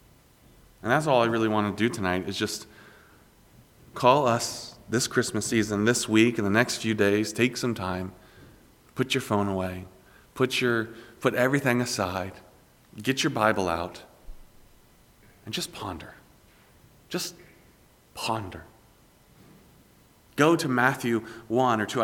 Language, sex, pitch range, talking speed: English, male, 105-130 Hz, 135 wpm